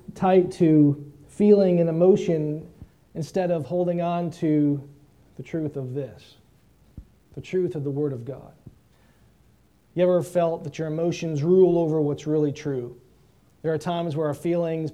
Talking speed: 155 wpm